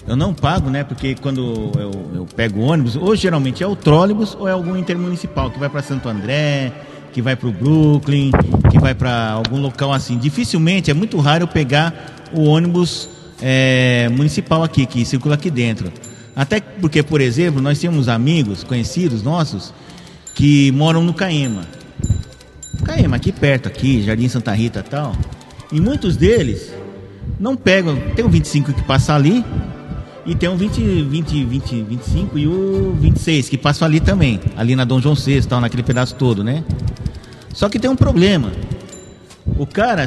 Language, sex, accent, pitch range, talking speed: Portuguese, male, Brazilian, 125-160 Hz, 175 wpm